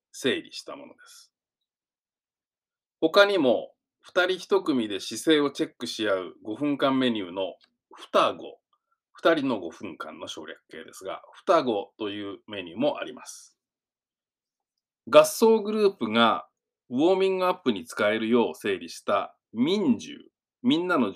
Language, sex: Japanese, male